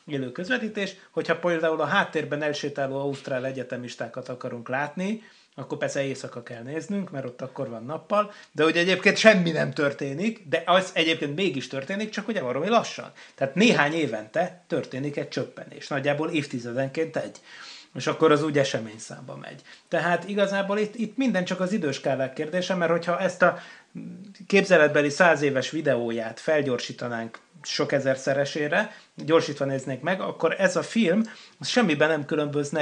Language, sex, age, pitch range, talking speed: Hungarian, male, 30-49, 140-185 Hz, 150 wpm